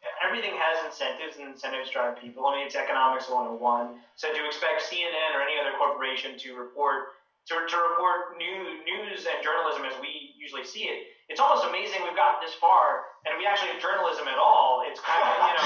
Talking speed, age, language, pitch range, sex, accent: 195 wpm, 30-49, English, 130-200 Hz, male, American